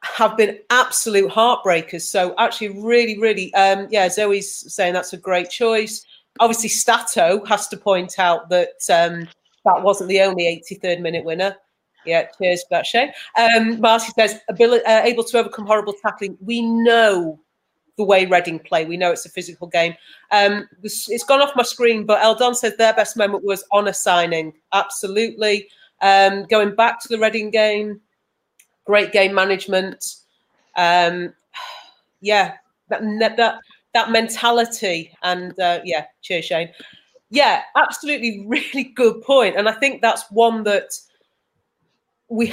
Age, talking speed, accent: 40-59, 150 wpm, British